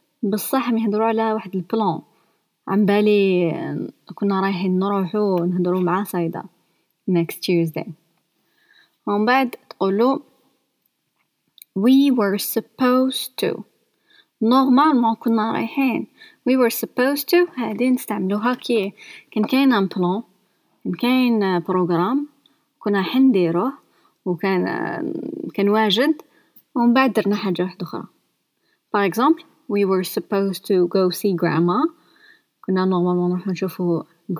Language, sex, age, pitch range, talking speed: Arabic, female, 20-39, 185-260 Hz, 80 wpm